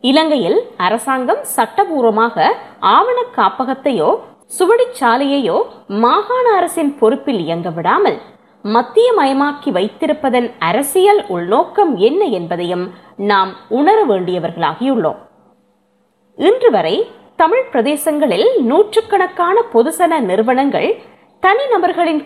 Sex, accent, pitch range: female, native, 230-370 Hz